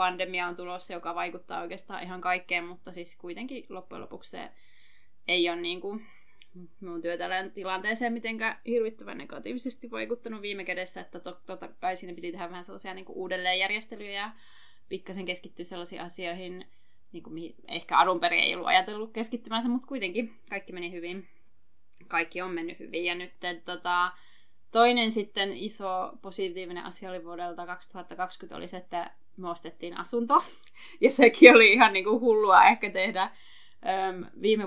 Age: 20-39